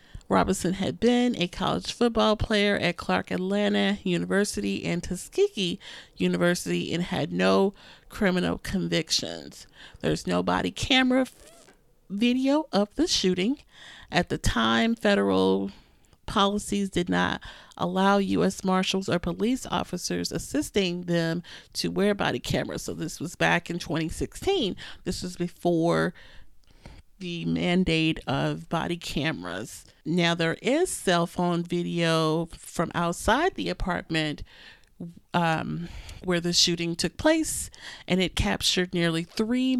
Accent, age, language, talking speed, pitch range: American, 40-59, English, 120 wpm, 165-205 Hz